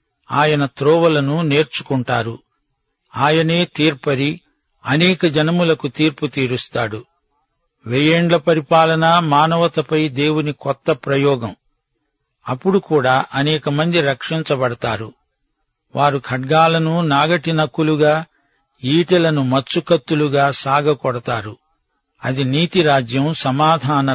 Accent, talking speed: native, 75 wpm